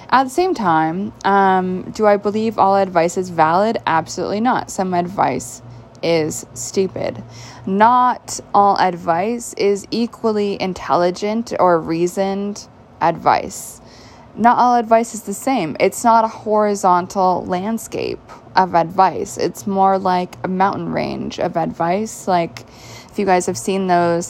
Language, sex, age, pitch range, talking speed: English, female, 20-39, 175-220 Hz, 135 wpm